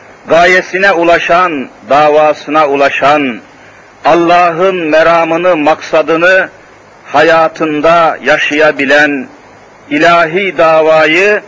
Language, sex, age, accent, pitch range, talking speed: Turkish, male, 50-69, native, 140-175 Hz, 60 wpm